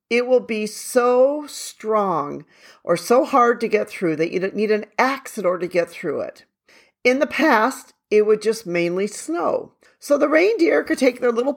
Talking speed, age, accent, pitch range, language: 195 wpm, 40-59, American, 170-250 Hz, English